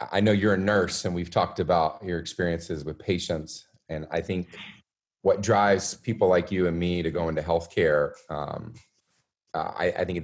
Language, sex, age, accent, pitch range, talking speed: English, male, 30-49, American, 75-85 Hz, 195 wpm